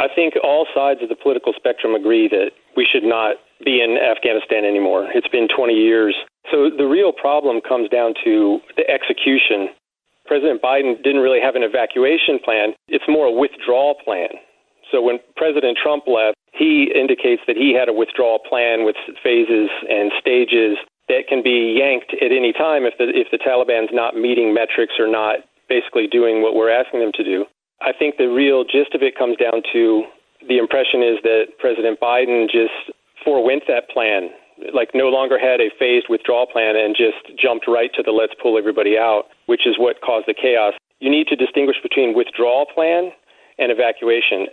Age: 40-59